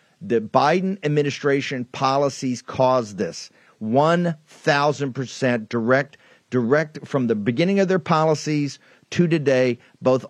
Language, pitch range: English, 130-155 Hz